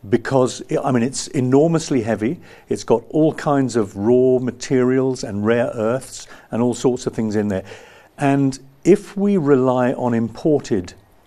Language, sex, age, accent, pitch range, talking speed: English, male, 50-69, British, 110-135 Hz, 155 wpm